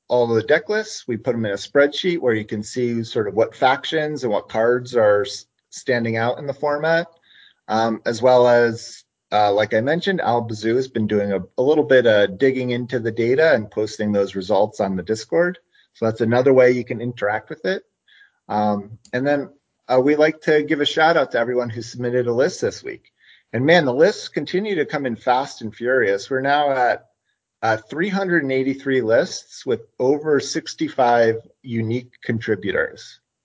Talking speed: 190 wpm